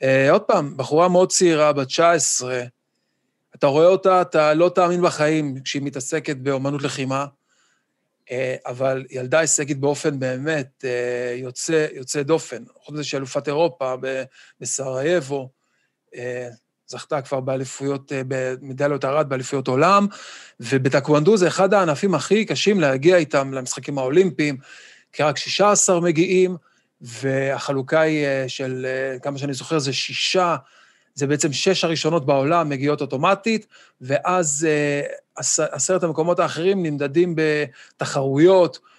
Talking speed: 110 wpm